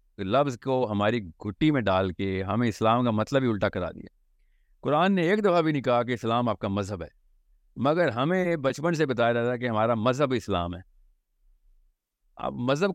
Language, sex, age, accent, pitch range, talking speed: English, male, 50-69, Indian, 110-160 Hz, 185 wpm